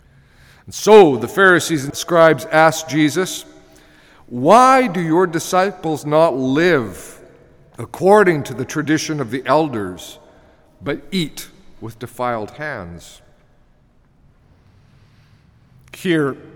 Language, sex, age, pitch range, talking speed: English, male, 50-69, 130-180 Hz, 100 wpm